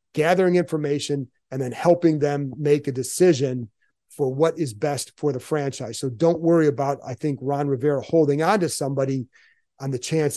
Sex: male